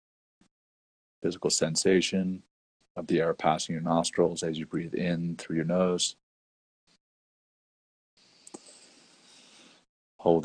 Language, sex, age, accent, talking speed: English, male, 40-59, American, 90 wpm